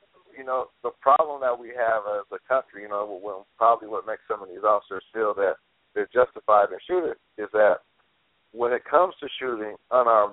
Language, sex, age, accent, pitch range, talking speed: English, male, 60-79, American, 115-190 Hz, 190 wpm